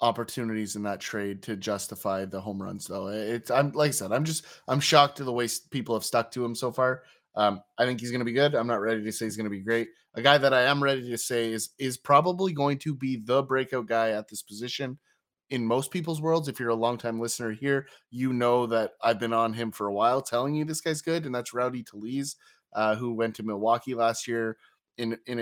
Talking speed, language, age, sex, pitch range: 245 wpm, English, 20-39, male, 110-130 Hz